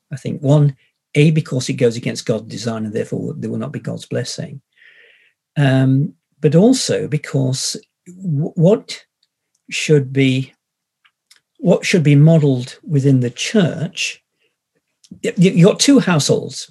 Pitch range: 135-170 Hz